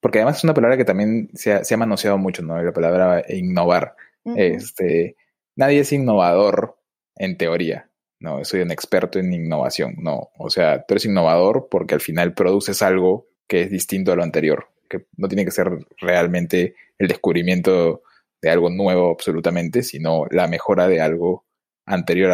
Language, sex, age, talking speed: Spanish, male, 20-39, 170 wpm